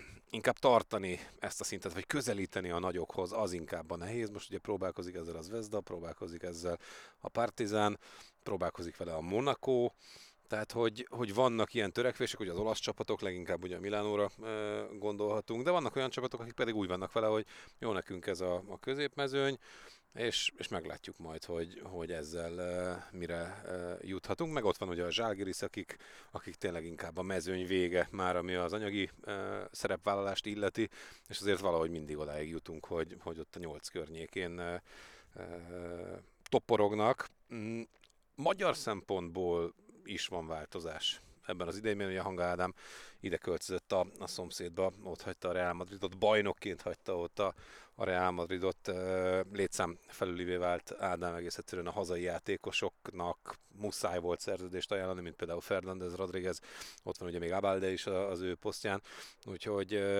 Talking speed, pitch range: 150 wpm, 90-105 Hz